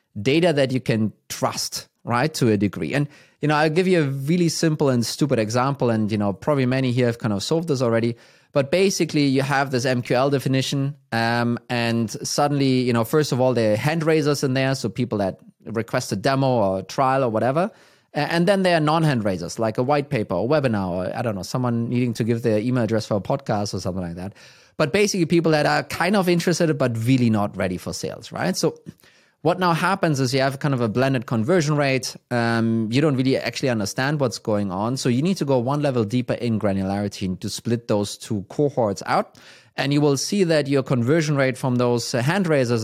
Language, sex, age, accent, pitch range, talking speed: English, male, 30-49, German, 115-150 Hz, 225 wpm